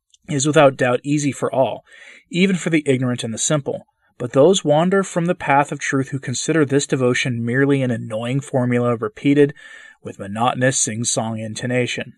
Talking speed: 170 wpm